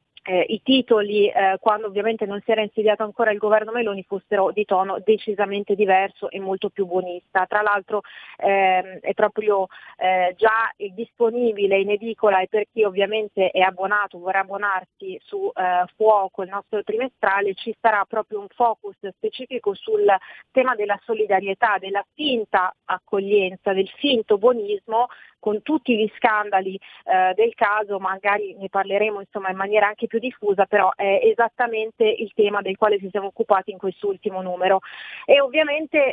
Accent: native